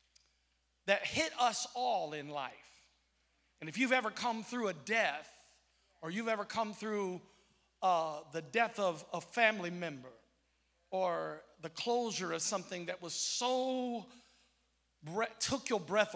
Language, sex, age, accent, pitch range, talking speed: English, male, 50-69, American, 165-240 Hz, 140 wpm